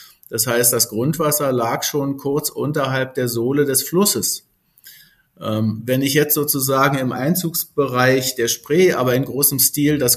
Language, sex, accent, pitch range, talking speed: German, male, German, 125-150 Hz, 155 wpm